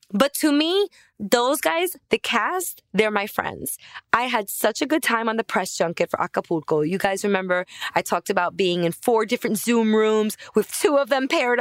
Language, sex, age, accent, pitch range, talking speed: English, female, 20-39, American, 200-290 Hz, 200 wpm